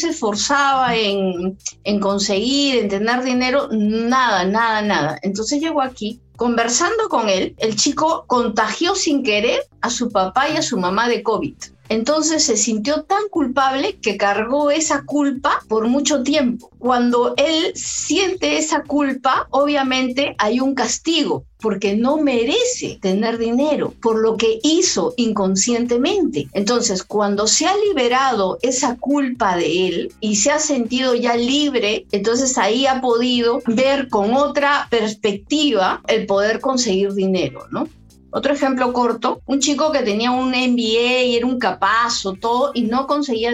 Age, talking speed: 50-69, 150 wpm